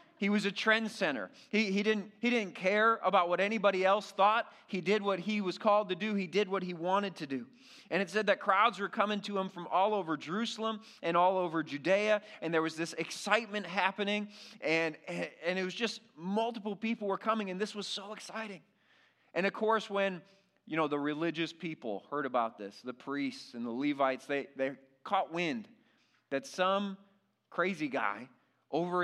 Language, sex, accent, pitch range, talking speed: English, male, American, 160-210 Hz, 195 wpm